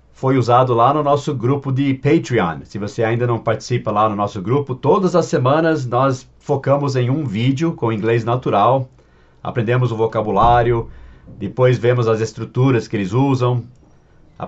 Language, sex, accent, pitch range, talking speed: English, male, Brazilian, 115-140 Hz, 160 wpm